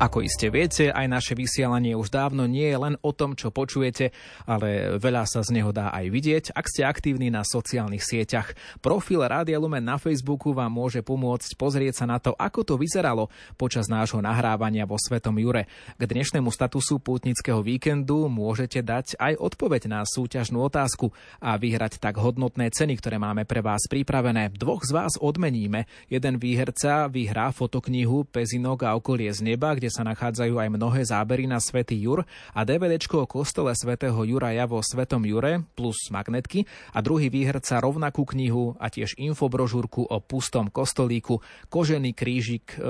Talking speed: 165 wpm